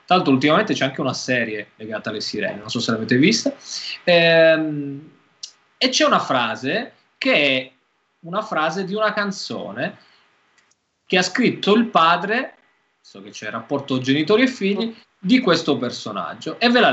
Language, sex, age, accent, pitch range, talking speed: Italian, male, 20-39, native, 130-195 Hz, 165 wpm